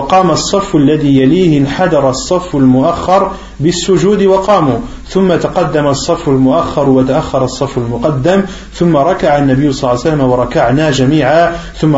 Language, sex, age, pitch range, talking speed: French, male, 40-59, 135-180 Hz, 130 wpm